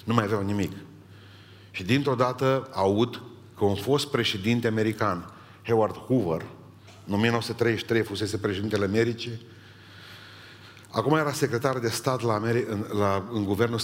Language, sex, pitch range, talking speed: Romanian, male, 100-115 Hz, 135 wpm